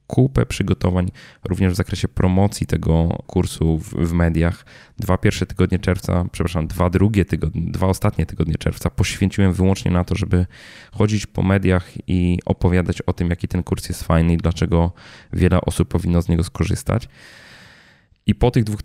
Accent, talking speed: native, 160 wpm